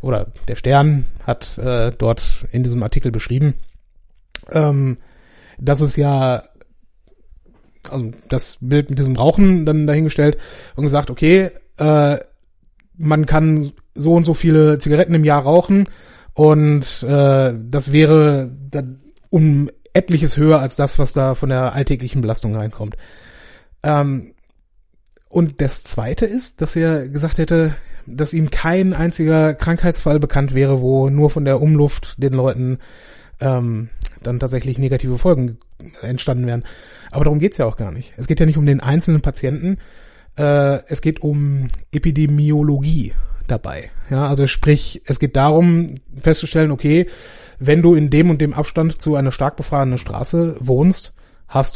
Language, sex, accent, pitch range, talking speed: German, male, German, 130-155 Hz, 145 wpm